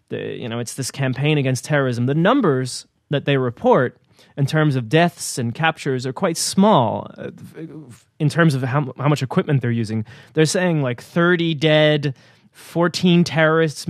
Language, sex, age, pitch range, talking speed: English, male, 20-39, 125-155 Hz, 165 wpm